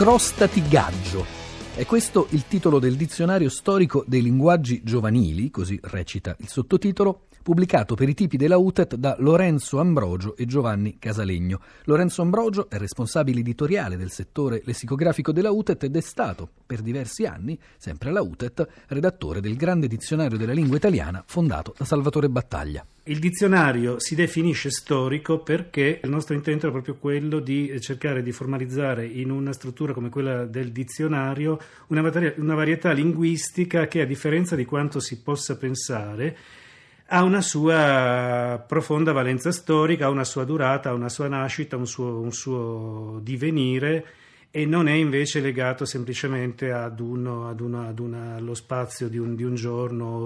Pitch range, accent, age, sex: 115-155 Hz, native, 40-59, male